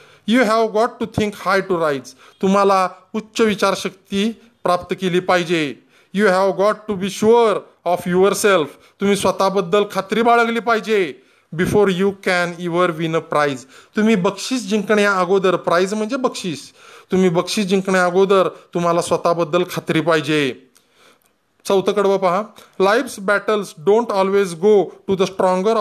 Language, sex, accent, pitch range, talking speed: Marathi, male, native, 180-210 Hz, 145 wpm